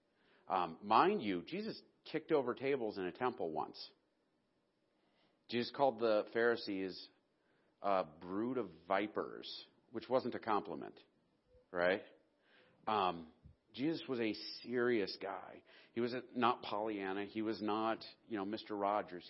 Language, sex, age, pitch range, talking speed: English, male, 40-59, 95-115 Hz, 130 wpm